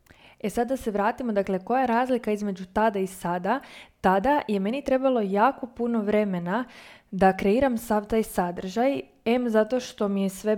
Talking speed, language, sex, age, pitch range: 175 wpm, Croatian, female, 20-39, 190-220 Hz